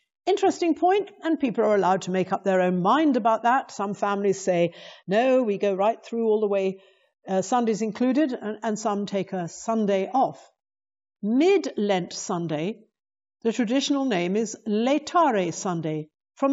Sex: female